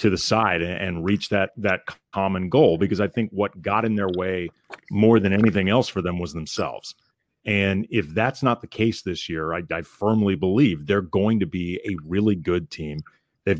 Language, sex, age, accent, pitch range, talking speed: English, male, 30-49, American, 95-110 Hz, 205 wpm